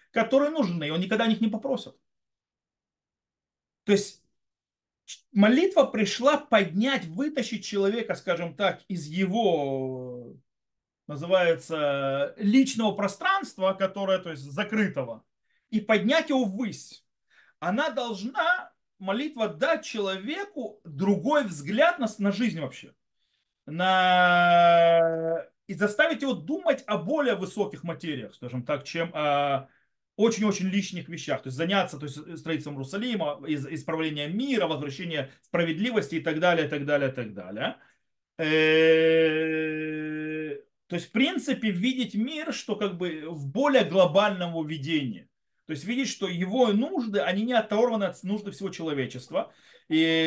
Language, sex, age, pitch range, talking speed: Russian, male, 30-49, 160-235 Hz, 120 wpm